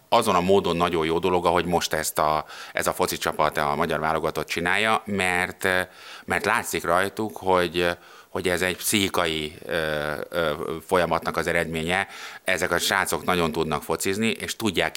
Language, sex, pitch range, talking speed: Hungarian, male, 80-85 Hz, 150 wpm